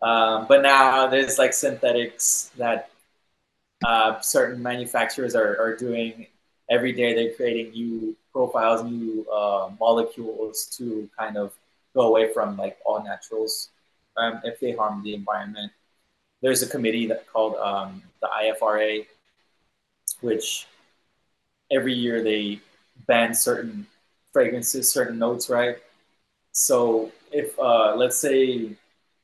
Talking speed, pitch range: 125 wpm, 110-130 Hz